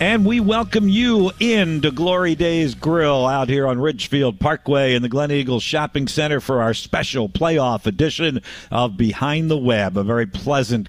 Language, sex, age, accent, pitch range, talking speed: English, male, 50-69, American, 115-155 Hz, 170 wpm